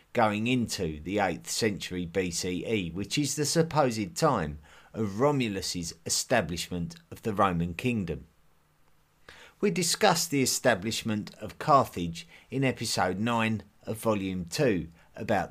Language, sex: English, male